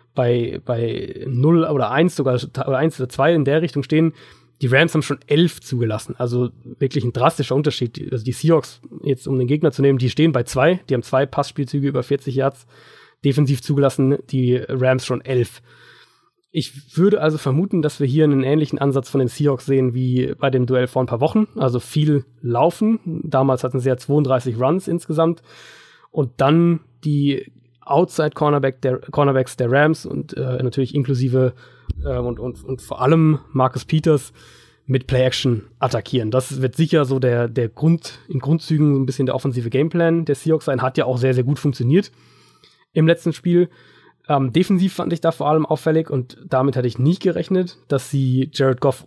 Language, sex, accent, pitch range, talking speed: German, male, German, 130-160 Hz, 185 wpm